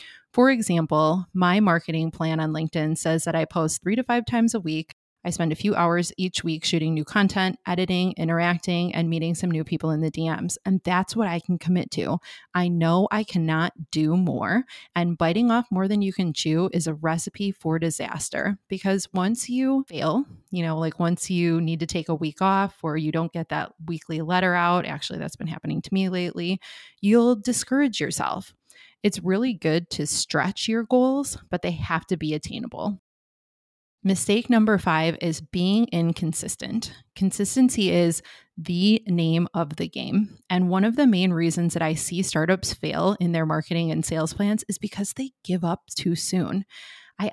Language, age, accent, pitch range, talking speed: English, 20-39, American, 165-205 Hz, 185 wpm